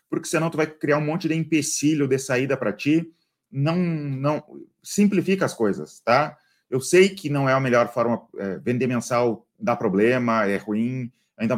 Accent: Brazilian